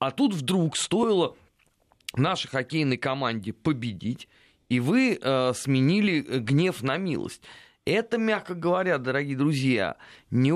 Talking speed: 120 wpm